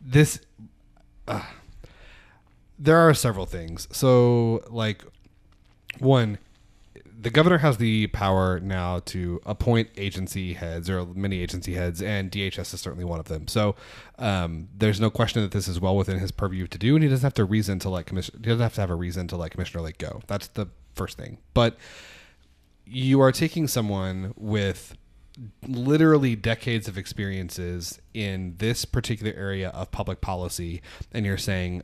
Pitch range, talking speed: 95-120 Hz, 165 wpm